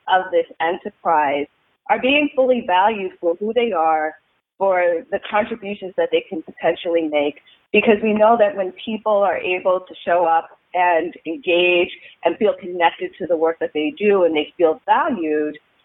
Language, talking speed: English, 170 wpm